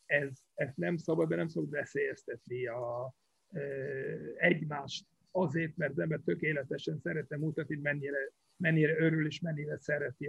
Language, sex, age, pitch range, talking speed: Hungarian, male, 50-69, 155-200 Hz, 140 wpm